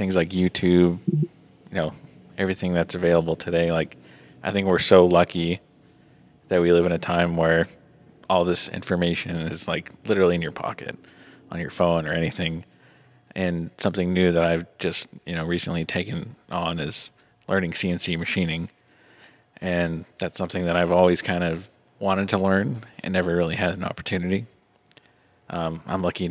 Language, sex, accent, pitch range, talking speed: English, male, American, 85-95 Hz, 160 wpm